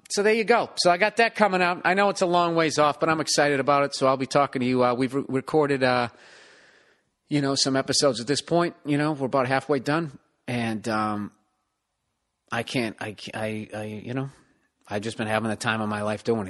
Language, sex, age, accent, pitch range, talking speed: English, male, 40-59, American, 130-190 Hz, 235 wpm